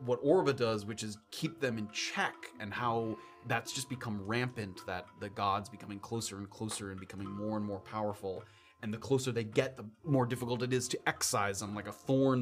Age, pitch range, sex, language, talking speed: 30-49, 105-125 Hz, male, English, 215 wpm